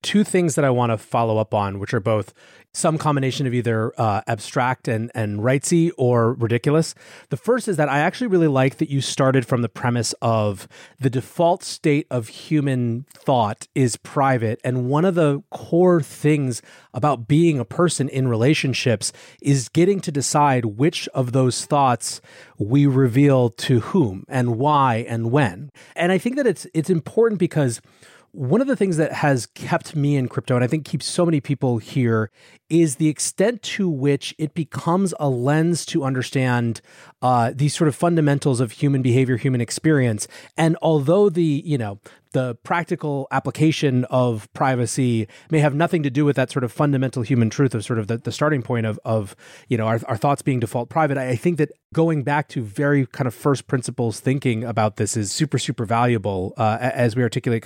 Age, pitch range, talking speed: 30-49, 120-150 Hz, 190 wpm